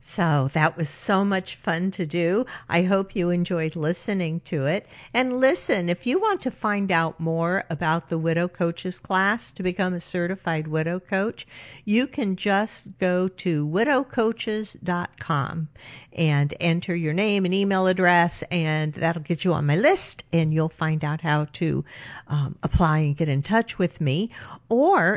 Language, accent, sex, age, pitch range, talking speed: English, American, female, 50-69, 160-215 Hz, 165 wpm